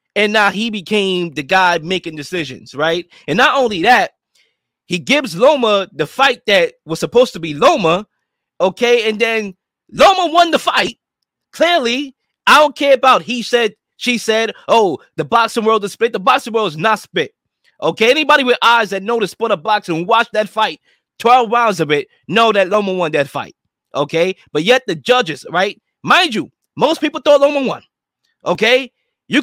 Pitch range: 175-255 Hz